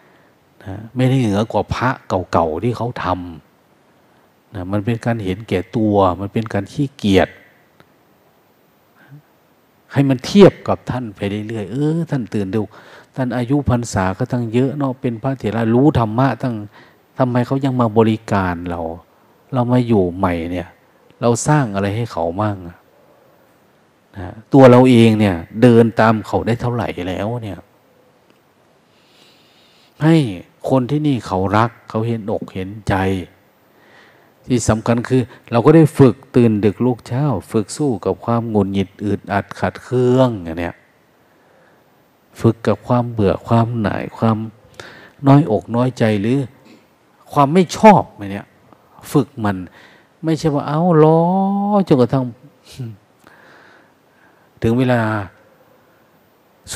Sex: male